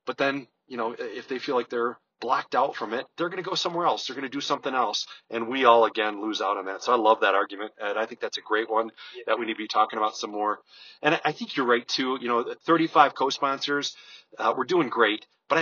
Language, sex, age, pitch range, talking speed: English, male, 40-59, 115-140 Hz, 260 wpm